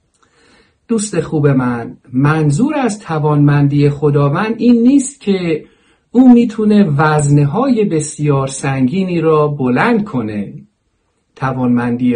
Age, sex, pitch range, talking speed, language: 50-69, male, 130-195 Hz, 95 wpm, Persian